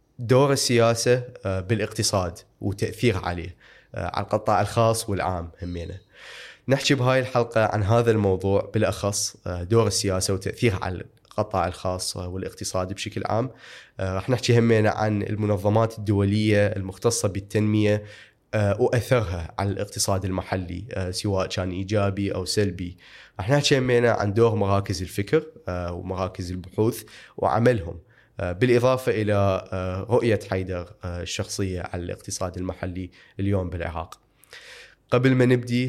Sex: male